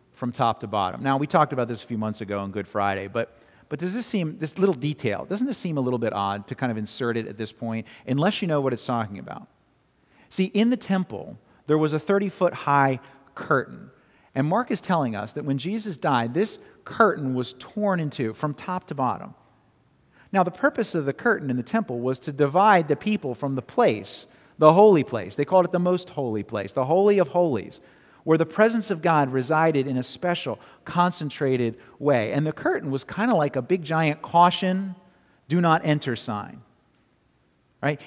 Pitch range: 125-180 Hz